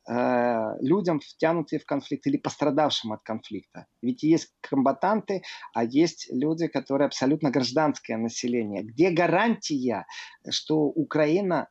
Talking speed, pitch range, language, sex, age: 115 wpm, 135-170 Hz, Russian, male, 30-49